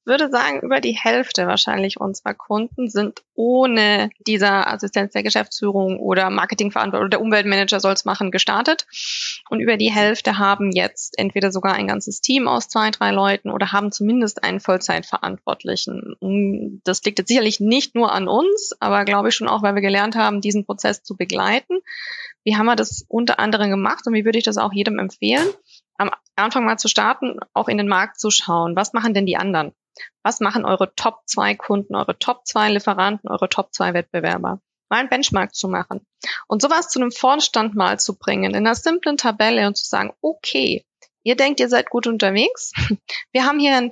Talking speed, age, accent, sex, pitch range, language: 185 wpm, 20-39, German, female, 200-260 Hz, German